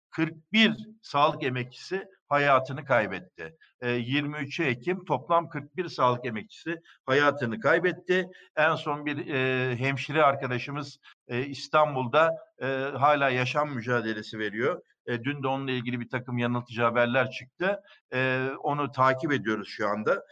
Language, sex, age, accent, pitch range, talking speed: Turkish, male, 60-79, native, 130-180 Hz, 110 wpm